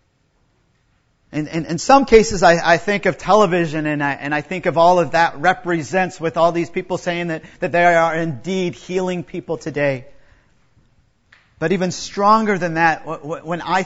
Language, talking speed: English, 150 wpm